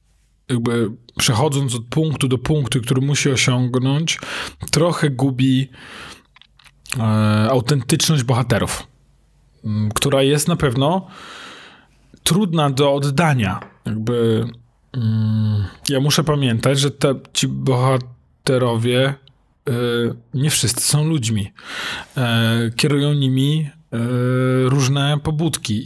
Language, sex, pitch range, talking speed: Polish, male, 115-145 Hz, 80 wpm